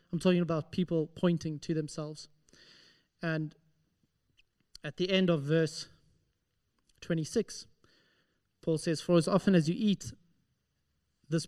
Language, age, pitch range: English, 30-49, 155-180 Hz